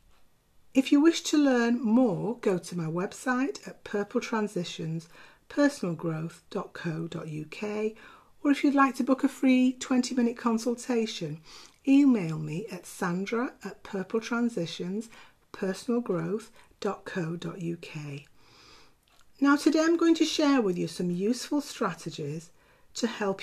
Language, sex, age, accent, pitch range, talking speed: English, female, 40-59, British, 170-245 Hz, 105 wpm